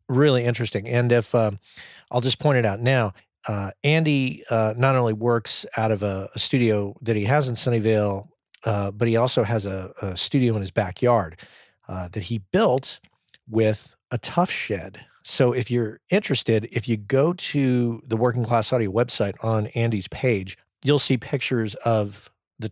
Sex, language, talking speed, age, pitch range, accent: male, English, 175 wpm, 40-59, 105-130 Hz, American